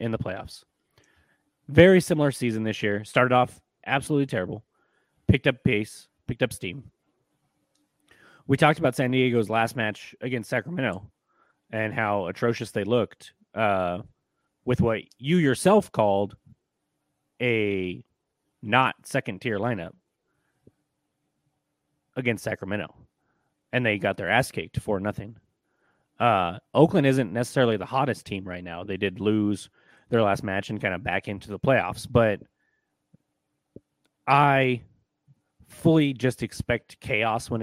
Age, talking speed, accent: 30-49, 130 wpm, American